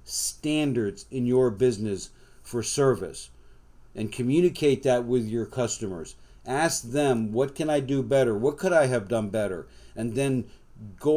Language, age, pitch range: English, 50-69, 110-130 Hz